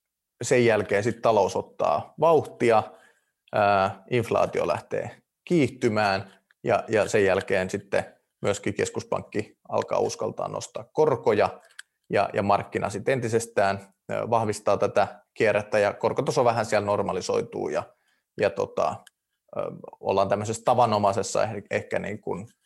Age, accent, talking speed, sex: 30-49, native, 120 wpm, male